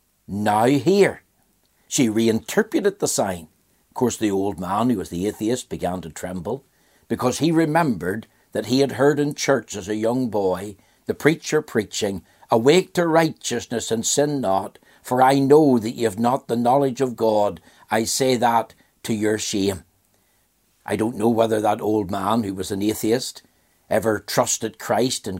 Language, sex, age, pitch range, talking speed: English, male, 60-79, 105-140 Hz, 170 wpm